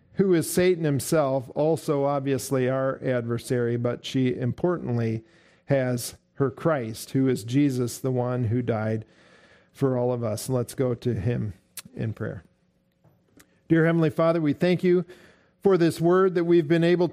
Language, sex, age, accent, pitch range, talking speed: English, male, 50-69, American, 130-170 Hz, 155 wpm